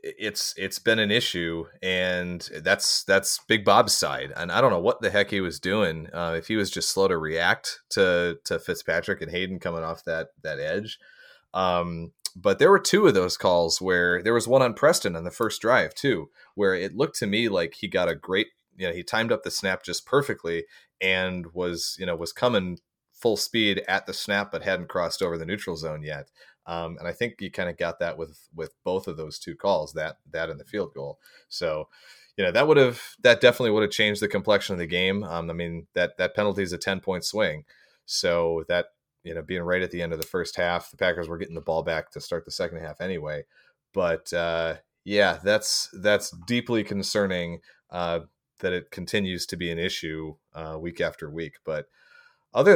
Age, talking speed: 30-49, 220 wpm